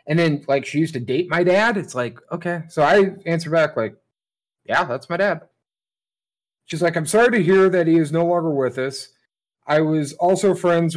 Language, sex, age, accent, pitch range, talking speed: English, male, 30-49, American, 140-180 Hz, 210 wpm